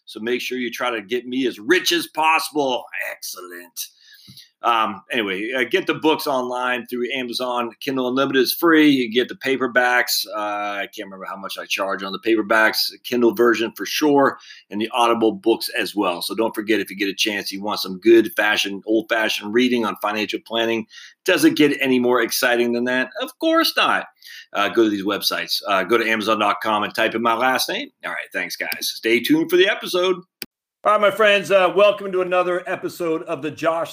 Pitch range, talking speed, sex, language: 120-180 Hz, 210 wpm, male, English